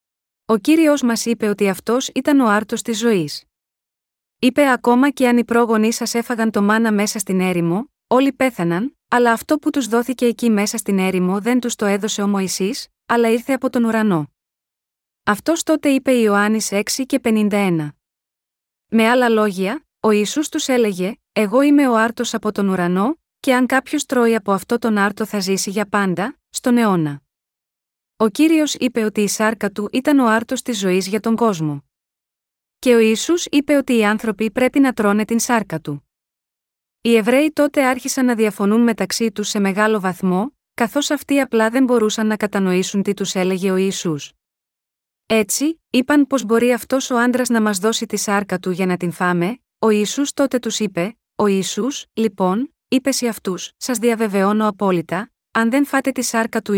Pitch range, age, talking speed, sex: 200-250 Hz, 20-39, 180 wpm, female